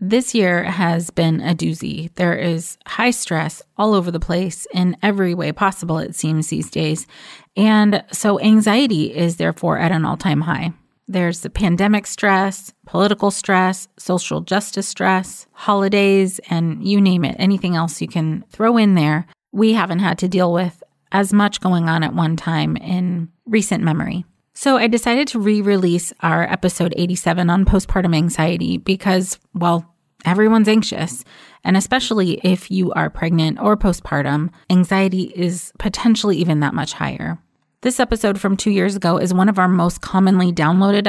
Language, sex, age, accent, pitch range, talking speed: English, female, 30-49, American, 170-200 Hz, 160 wpm